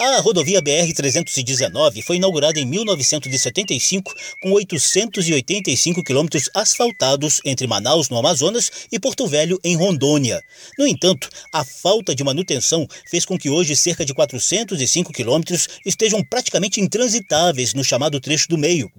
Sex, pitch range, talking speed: male, 140-195 Hz, 135 wpm